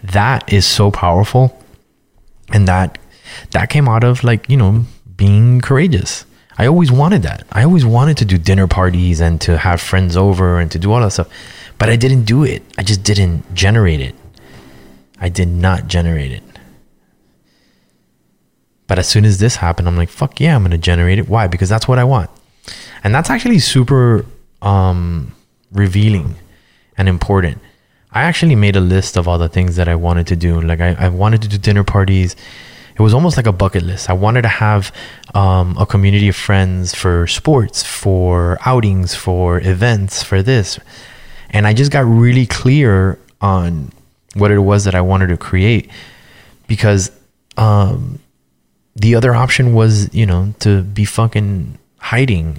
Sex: male